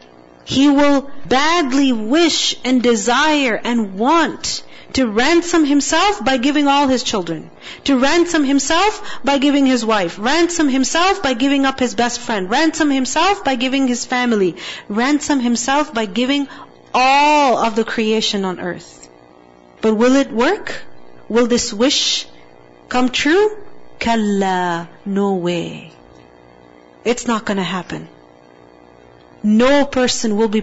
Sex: female